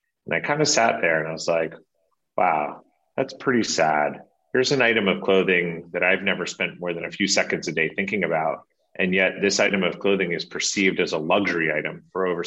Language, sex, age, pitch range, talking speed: English, male, 30-49, 85-100 Hz, 220 wpm